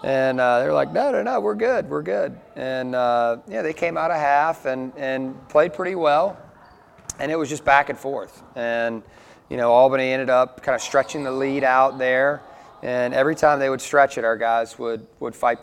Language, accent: English, American